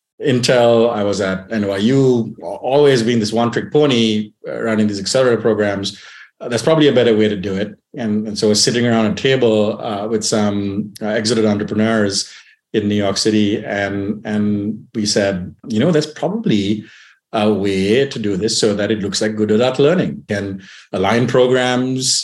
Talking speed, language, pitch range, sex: 180 wpm, English, 105-120 Hz, male